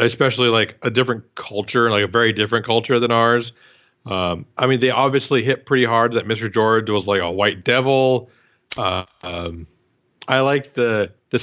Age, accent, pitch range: 40-59, American, 115-130 Hz